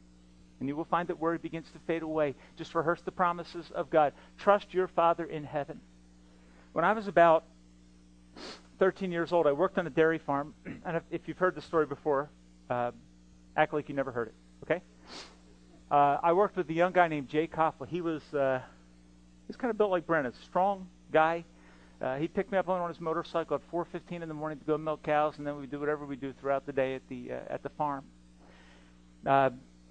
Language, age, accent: English, 40-59, American